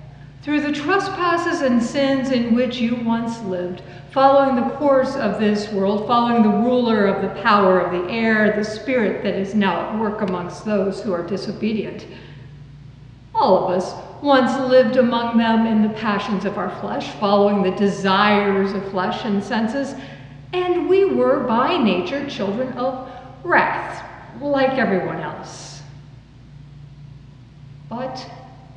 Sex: female